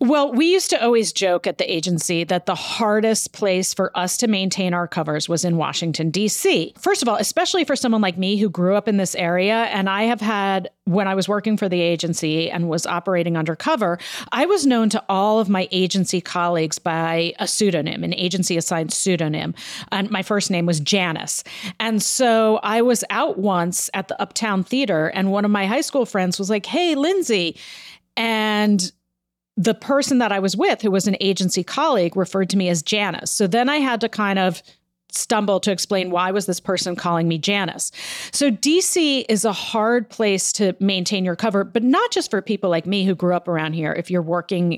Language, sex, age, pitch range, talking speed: English, female, 40-59, 180-225 Hz, 205 wpm